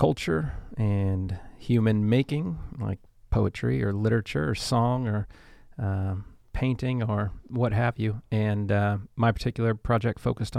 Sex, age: male, 40-59